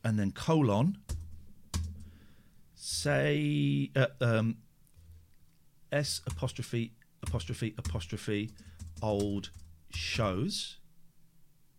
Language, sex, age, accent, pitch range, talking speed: English, male, 40-59, British, 105-165 Hz, 60 wpm